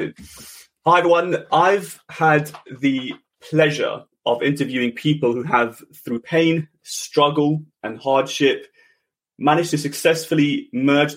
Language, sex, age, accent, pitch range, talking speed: English, male, 30-49, British, 125-160 Hz, 105 wpm